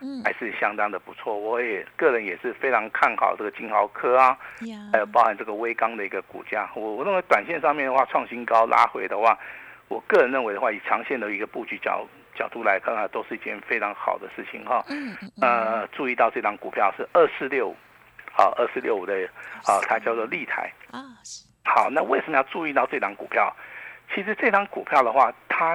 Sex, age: male, 50-69